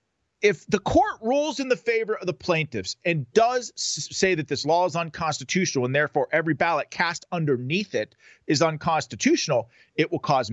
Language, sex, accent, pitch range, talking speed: English, male, American, 130-195 Hz, 170 wpm